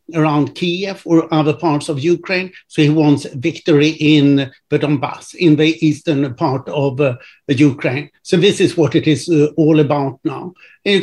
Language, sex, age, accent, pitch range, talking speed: English, male, 60-79, Swedish, 145-170 Hz, 180 wpm